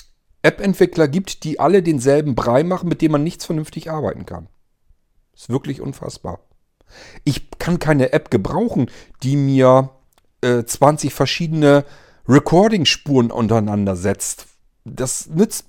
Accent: German